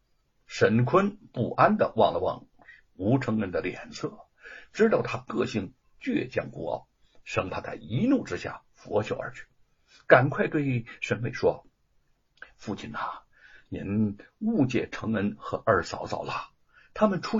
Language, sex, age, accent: Chinese, male, 60-79, native